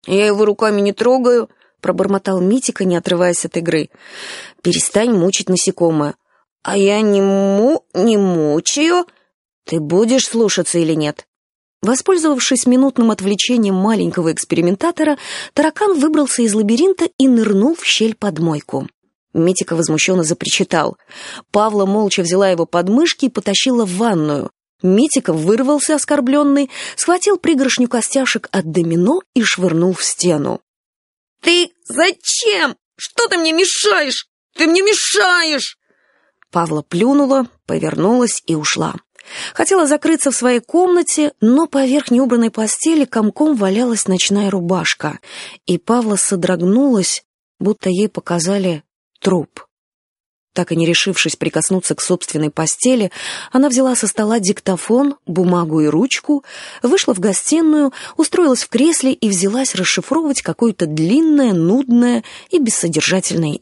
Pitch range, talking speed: 180-275 Hz, 120 wpm